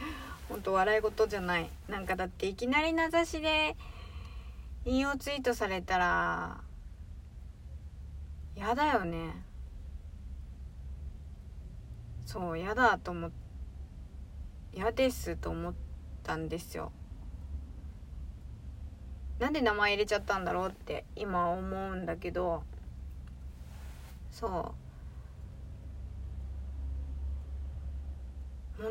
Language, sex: Japanese, female